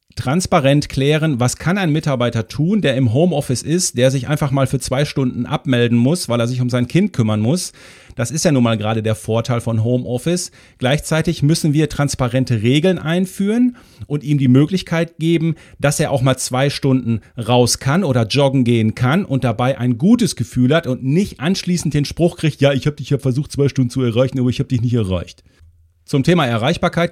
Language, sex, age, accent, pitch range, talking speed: German, male, 40-59, German, 120-155 Hz, 205 wpm